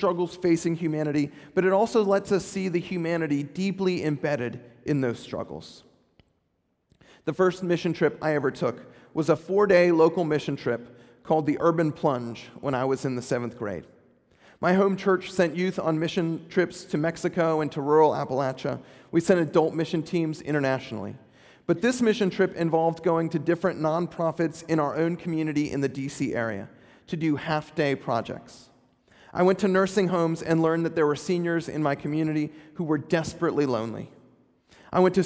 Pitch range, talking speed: 145-180 Hz, 175 wpm